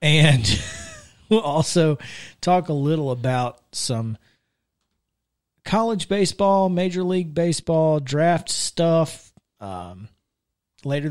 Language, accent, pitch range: English, American, 120-155 Hz